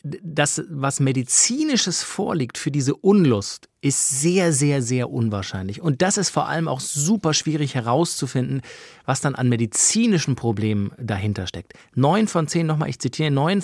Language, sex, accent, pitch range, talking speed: German, male, German, 120-155 Hz, 155 wpm